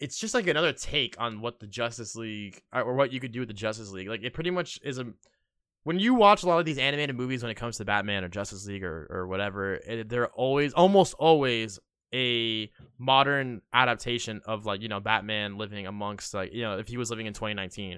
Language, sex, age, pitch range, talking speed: English, male, 20-39, 110-140 Hz, 225 wpm